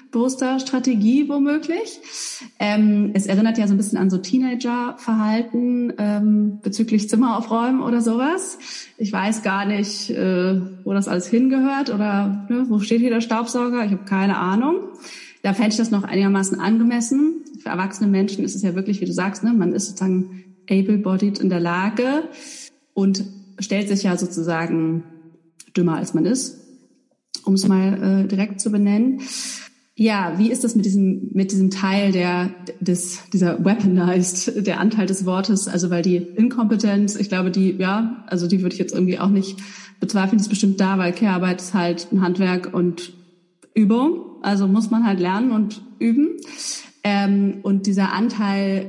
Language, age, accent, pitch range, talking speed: German, 30-49, German, 185-235 Hz, 165 wpm